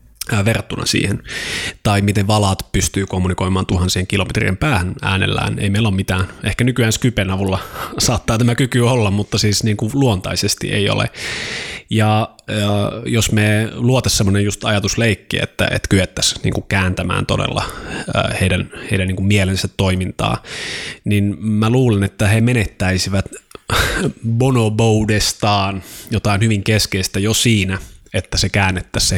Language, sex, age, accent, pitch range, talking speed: Finnish, male, 20-39, native, 95-110 Hz, 135 wpm